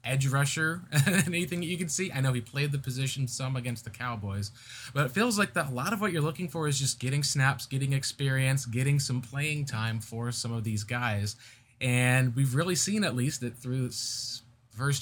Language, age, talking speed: English, 20-39, 220 wpm